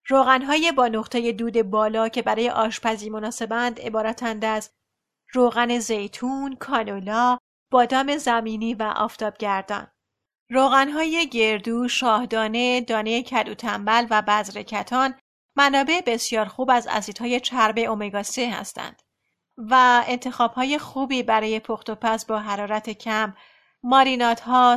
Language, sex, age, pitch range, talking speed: Persian, female, 30-49, 220-250 Hz, 110 wpm